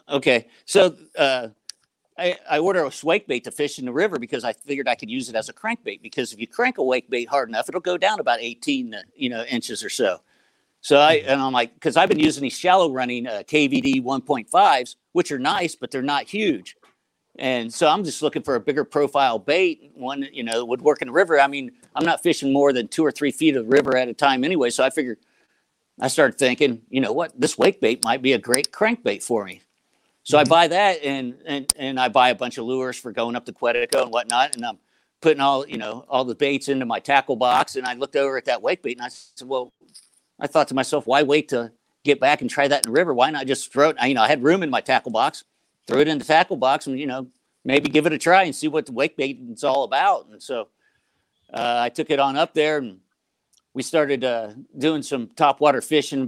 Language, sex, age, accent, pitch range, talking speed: English, male, 50-69, American, 125-155 Hz, 255 wpm